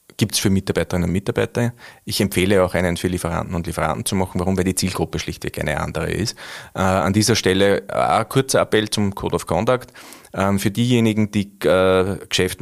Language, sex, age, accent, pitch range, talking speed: German, male, 30-49, Austrian, 90-110 Hz, 195 wpm